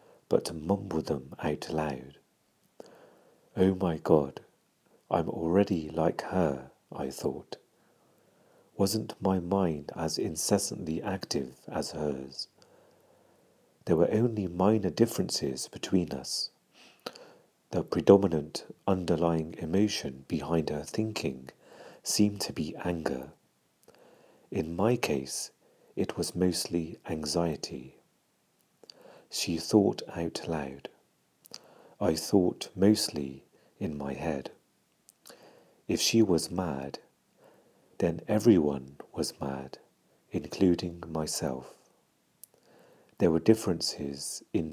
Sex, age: male, 50-69